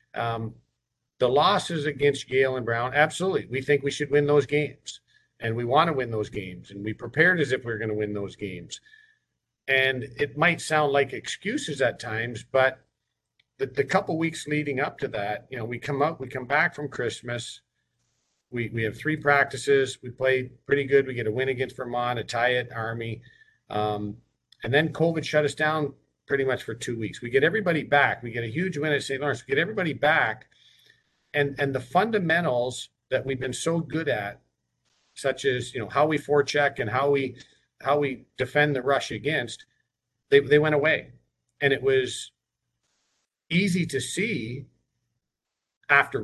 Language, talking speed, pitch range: English, 190 wpm, 120-150 Hz